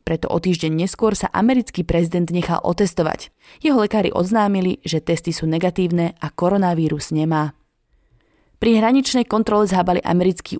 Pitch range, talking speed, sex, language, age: 165-195 Hz, 135 wpm, female, Slovak, 20-39